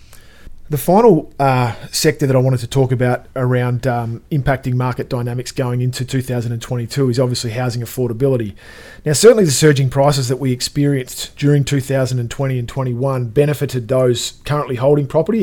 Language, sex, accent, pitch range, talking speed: English, male, Australian, 125-145 Hz, 150 wpm